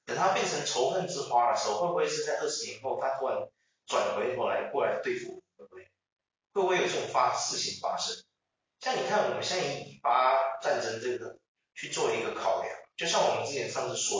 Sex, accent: male, native